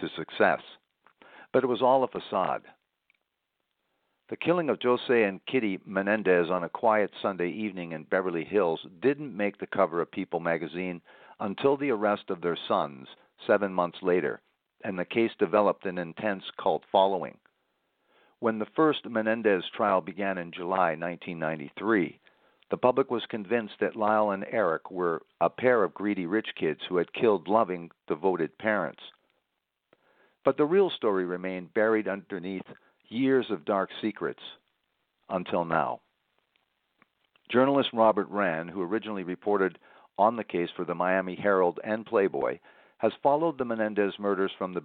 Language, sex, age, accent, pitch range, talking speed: English, male, 50-69, American, 90-115 Hz, 150 wpm